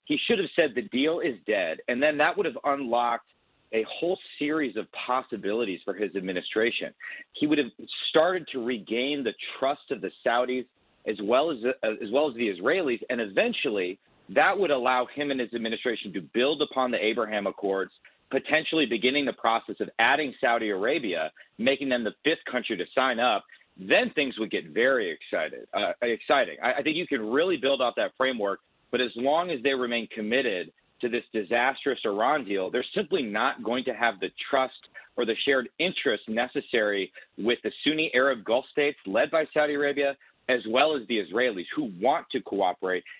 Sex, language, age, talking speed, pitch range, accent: male, English, 40-59, 185 wpm, 115-150 Hz, American